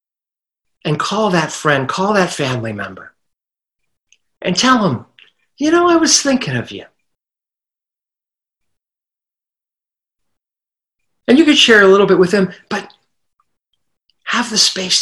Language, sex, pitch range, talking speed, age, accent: English, male, 160-205 Hz, 125 wpm, 50-69, American